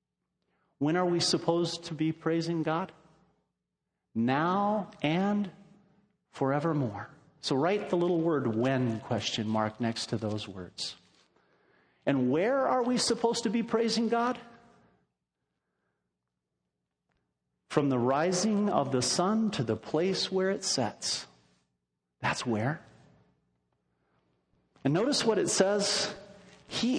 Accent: American